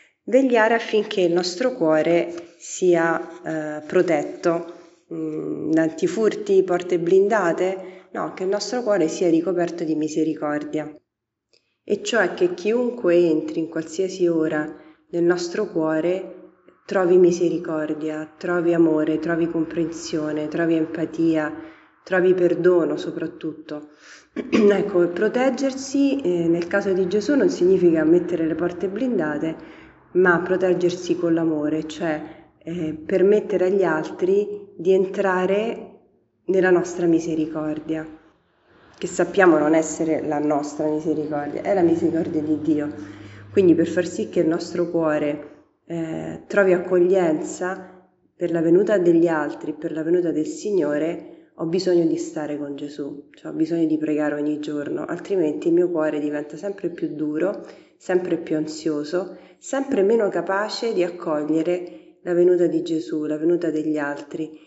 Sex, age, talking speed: female, 30-49, 130 wpm